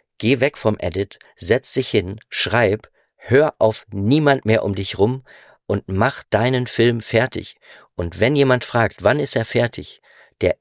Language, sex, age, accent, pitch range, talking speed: German, male, 50-69, German, 100-125 Hz, 165 wpm